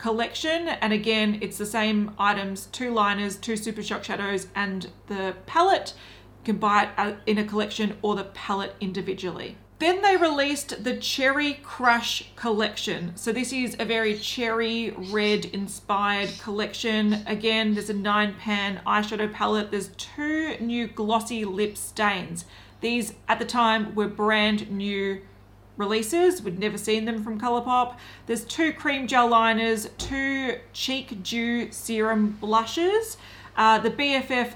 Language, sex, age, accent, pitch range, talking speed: English, female, 30-49, Australian, 205-240 Hz, 145 wpm